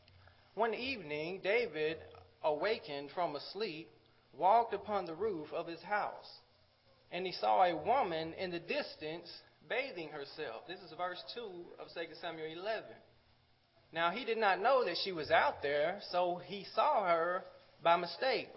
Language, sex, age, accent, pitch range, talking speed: English, male, 20-39, American, 160-210 Hz, 155 wpm